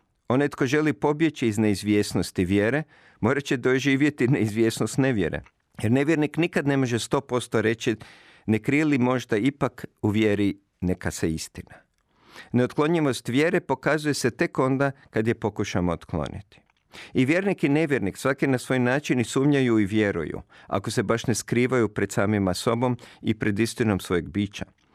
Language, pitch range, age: Croatian, 105-140 Hz, 50-69